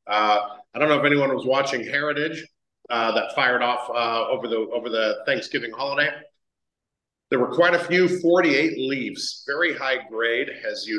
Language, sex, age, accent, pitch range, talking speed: English, male, 40-59, American, 110-135 Hz, 175 wpm